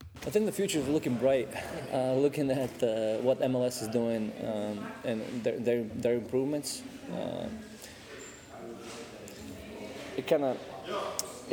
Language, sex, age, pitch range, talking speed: English, male, 20-39, 115-135 Hz, 115 wpm